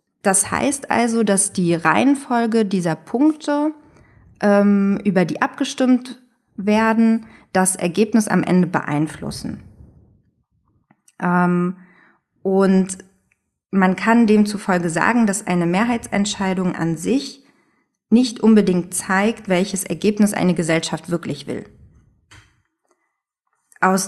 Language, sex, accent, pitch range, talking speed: German, female, German, 180-225 Hz, 90 wpm